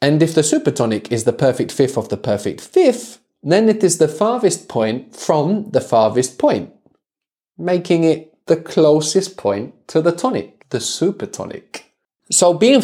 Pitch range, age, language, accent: 110-160 Hz, 20-39, English, British